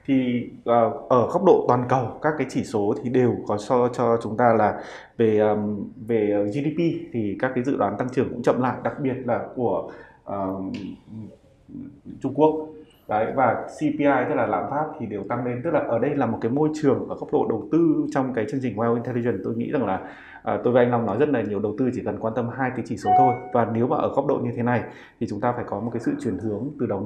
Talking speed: 250 wpm